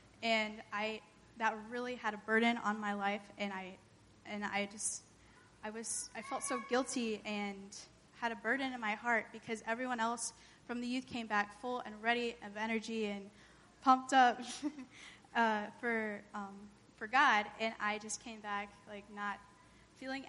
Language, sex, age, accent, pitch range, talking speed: English, female, 10-29, American, 200-230 Hz, 170 wpm